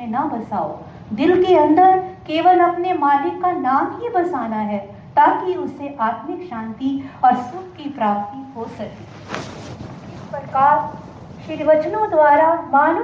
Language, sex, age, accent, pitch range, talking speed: Hindi, female, 50-69, native, 240-345 Hz, 110 wpm